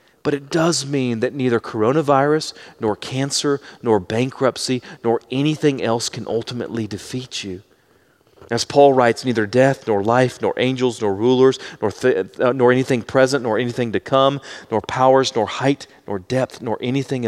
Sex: male